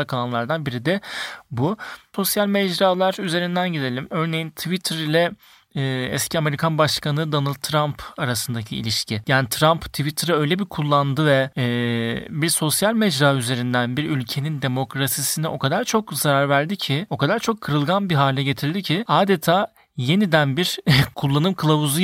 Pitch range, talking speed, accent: 135-180 Hz, 145 wpm, native